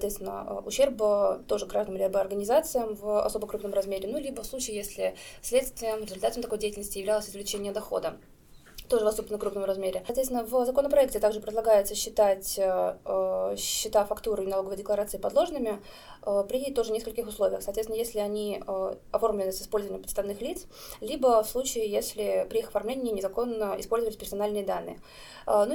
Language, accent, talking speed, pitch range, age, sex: Russian, native, 155 wpm, 200-235 Hz, 20-39, female